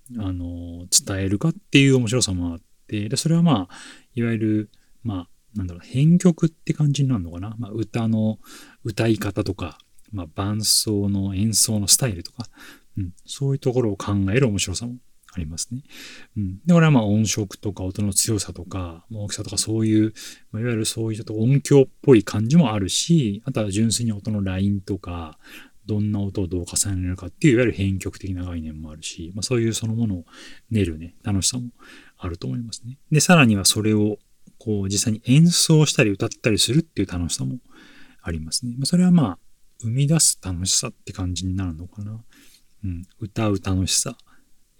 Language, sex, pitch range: Japanese, male, 95-125 Hz